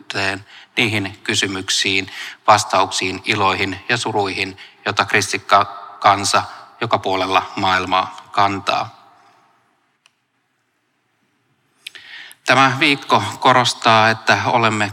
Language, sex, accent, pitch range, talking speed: Finnish, male, native, 95-115 Hz, 70 wpm